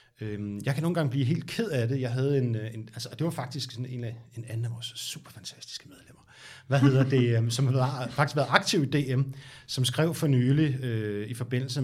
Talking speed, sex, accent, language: 220 wpm, male, native, Danish